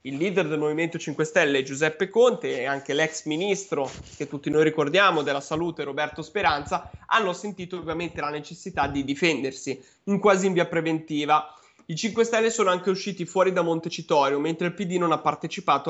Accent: native